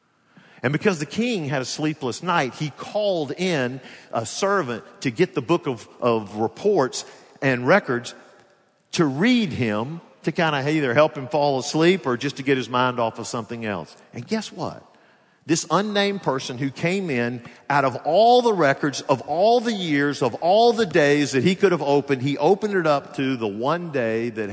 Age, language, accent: 50-69, English, American